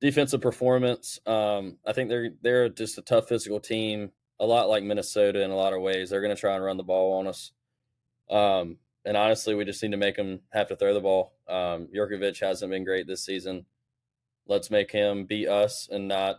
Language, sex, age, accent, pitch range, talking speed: English, male, 20-39, American, 95-125 Hz, 215 wpm